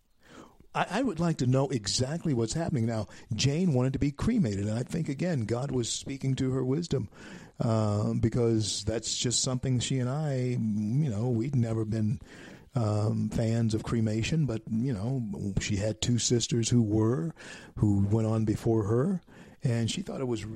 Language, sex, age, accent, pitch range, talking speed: English, male, 50-69, American, 105-140 Hz, 175 wpm